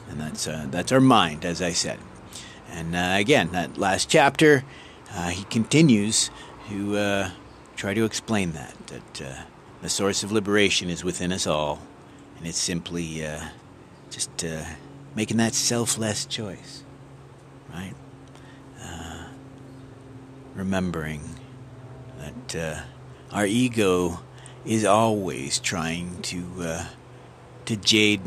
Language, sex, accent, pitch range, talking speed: English, male, American, 85-115 Hz, 125 wpm